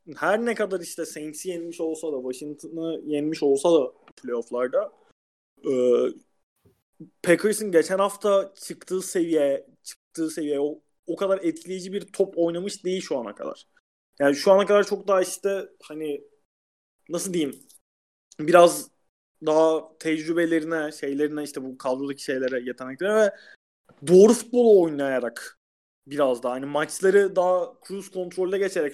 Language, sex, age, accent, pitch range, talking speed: Turkish, male, 30-49, native, 145-195 Hz, 130 wpm